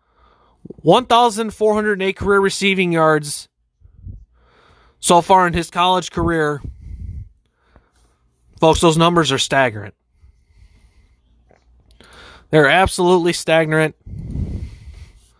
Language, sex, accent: English, male, American